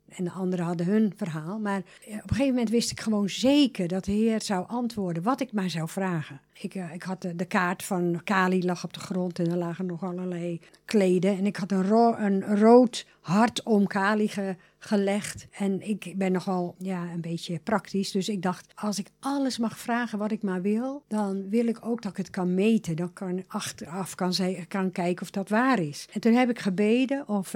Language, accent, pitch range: English, Dutch, 180-215 Hz